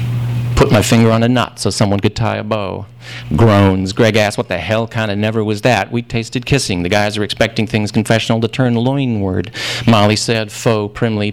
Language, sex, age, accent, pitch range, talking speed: English, male, 40-59, American, 105-120 Hz, 205 wpm